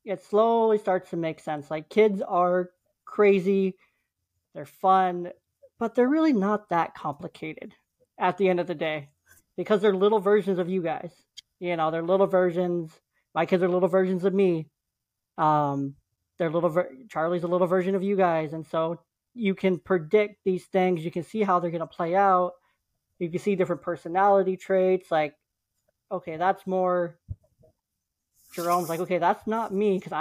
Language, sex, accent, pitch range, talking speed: English, male, American, 160-195 Hz, 170 wpm